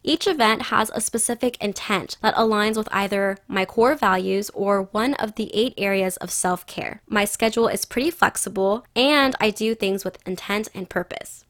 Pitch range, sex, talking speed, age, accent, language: 195-235 Hz, female, 175 wpm, 10-29, American, English